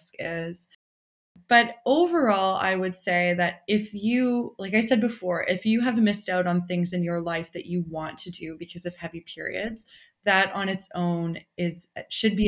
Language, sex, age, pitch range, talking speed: English, female, 20-39, 170-195 Hz, 190 wpm